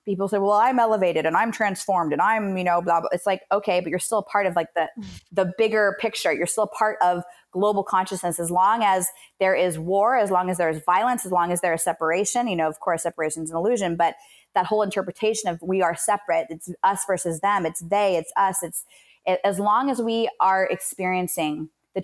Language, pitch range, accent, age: English, 170-205 Hz, American, 20-39